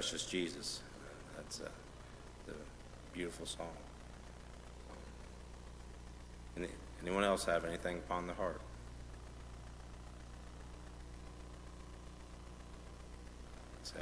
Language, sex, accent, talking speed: English, male, American, 60 wpm